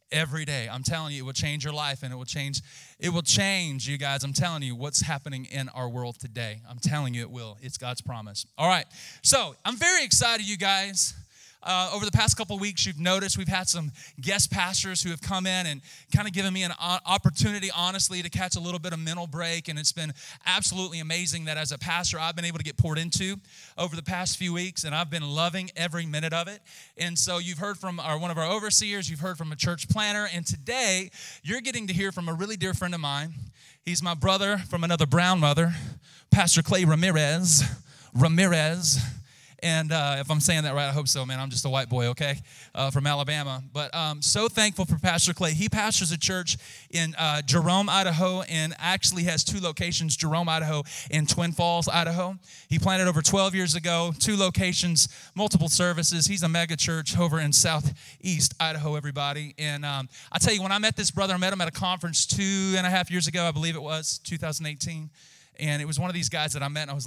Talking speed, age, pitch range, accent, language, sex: 225 wpm, 30-49, 145-180 Hz, American, English, male